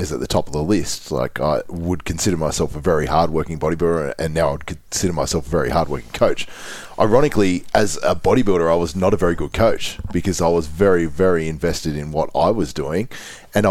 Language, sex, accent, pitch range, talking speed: English, male, Australian, 80-95 Hz, 225 wpm